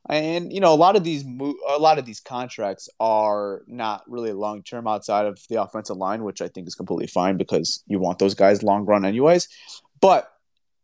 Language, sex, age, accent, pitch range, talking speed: English, male, 20-39, American, 110-155 Hz, 205 wpm